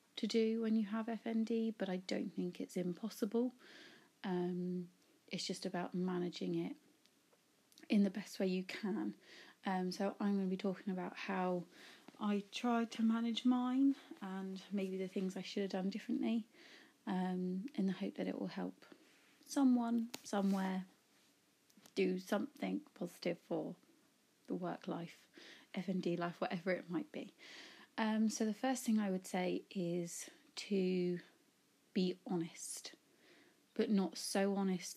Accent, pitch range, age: British, 185-230 Hz, 30-49